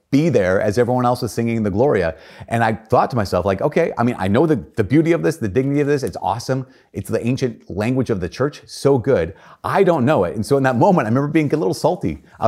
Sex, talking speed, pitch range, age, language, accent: male, 270 wpm, 95-125 Hz, 30-49, English, American